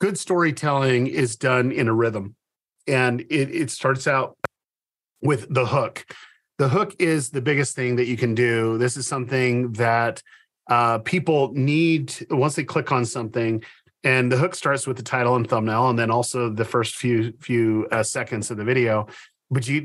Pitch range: 115-140 Hz